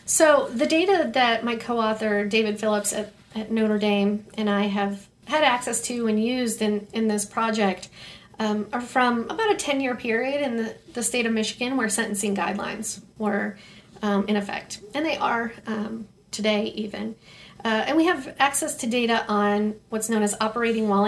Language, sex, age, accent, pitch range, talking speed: English, female, 40-59, American, 205-245 Hz, 180 wpm